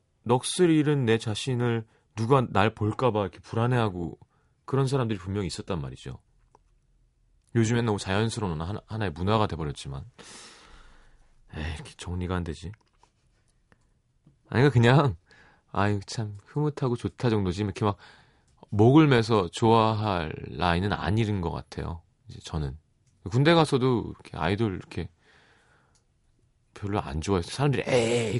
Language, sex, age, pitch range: Korean, male, 30-49, 95-125 Hz